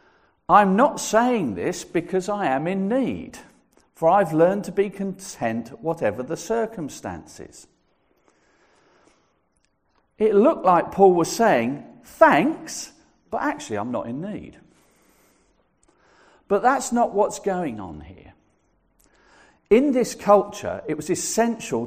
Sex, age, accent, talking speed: male, 50-69, British, 120 wpm